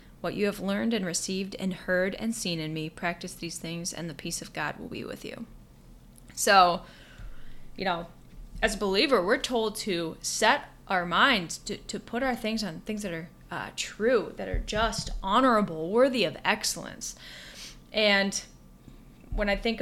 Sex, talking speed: female, 175 wpm